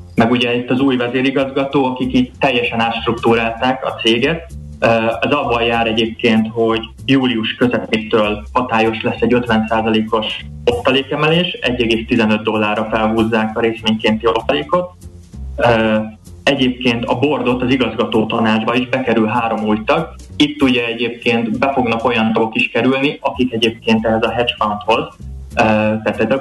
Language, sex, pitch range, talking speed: Hungarian, male, 110-125 Hz, 130 wpm